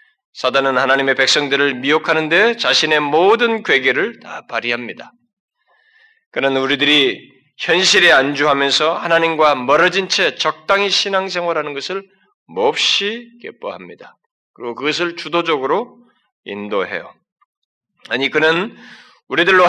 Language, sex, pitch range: Korean, male, 135-200 Hz